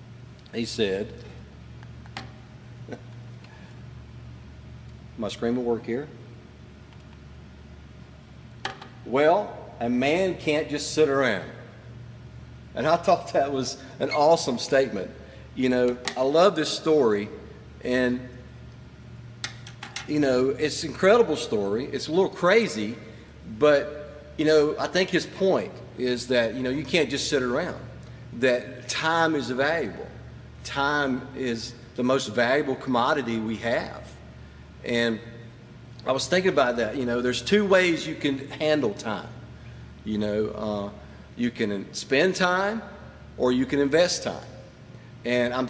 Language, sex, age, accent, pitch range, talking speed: English, male, 50-69, American, 115-140 Hz, 125 wpm